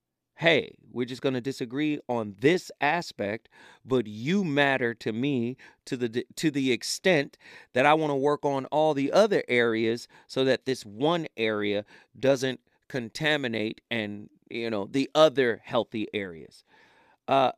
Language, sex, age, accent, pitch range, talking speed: English, male, 40-59, American, 115-165 Hz, 150 wpm